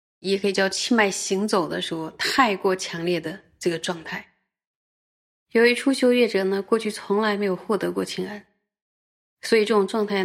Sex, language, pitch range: female, Chinese, 180-215 Hz